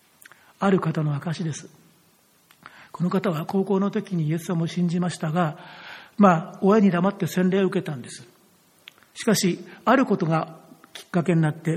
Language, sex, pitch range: Japanese, male, 165-195 Hz